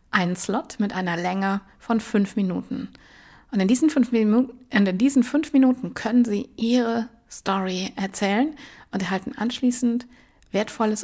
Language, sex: German, female